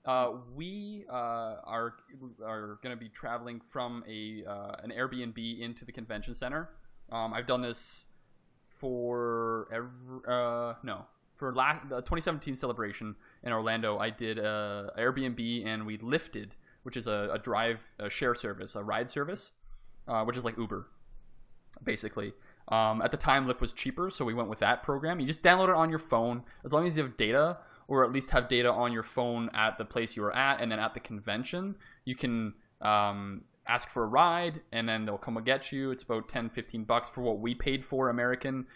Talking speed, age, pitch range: 195 wpm, 20-39, 110-130 Hz